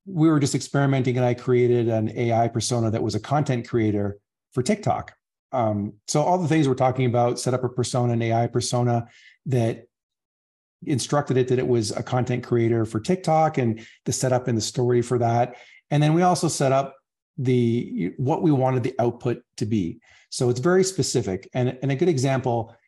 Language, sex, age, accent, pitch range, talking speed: English, male, 40-59, American, 110-130 Hz, 195 wpm